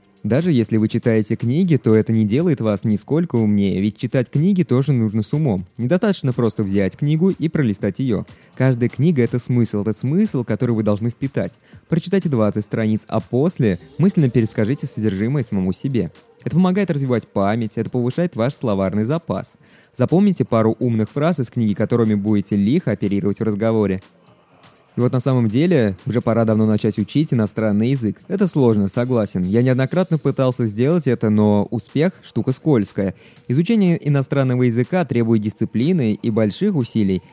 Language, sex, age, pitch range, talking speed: Russian, male, 20-39, 110-140 Hz, 160 wpm